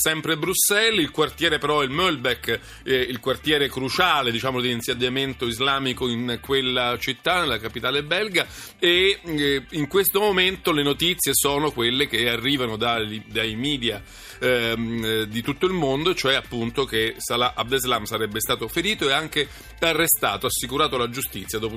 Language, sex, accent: Italian, male, native